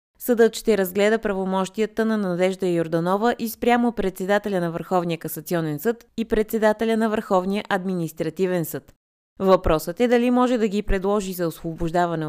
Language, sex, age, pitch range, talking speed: Bulgarian, female, 20-39, 170-220 Hz, 140 wpm